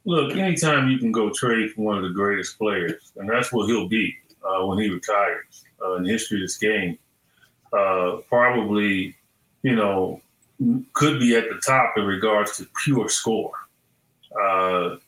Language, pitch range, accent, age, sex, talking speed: English, 100-125 Hz, American, 30-49, male, 170 wpm